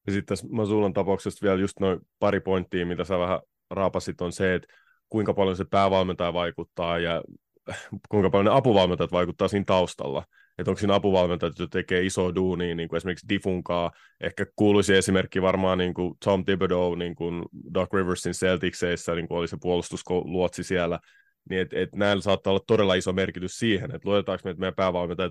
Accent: native